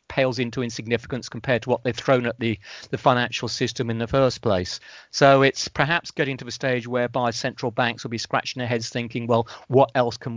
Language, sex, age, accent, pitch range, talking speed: English, male, 40-59, British, 115-130 Hz, 215 wpm